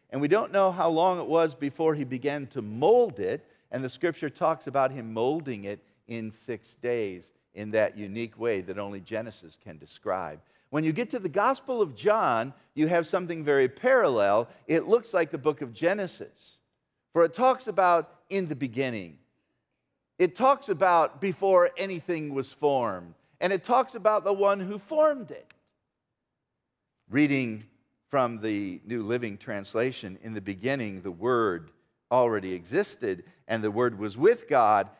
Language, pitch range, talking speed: English, 120-185 Hz, 165 wpm